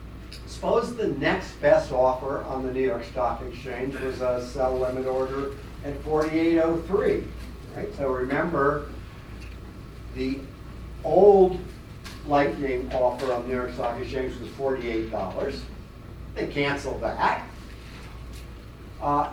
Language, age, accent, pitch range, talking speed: English, 60-79, American, 125-150 Hz, 115 wpm